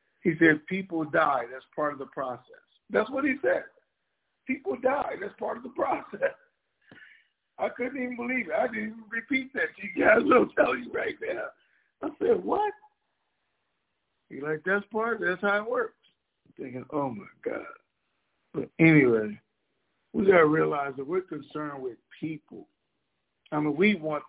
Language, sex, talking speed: English, male, 170 wpm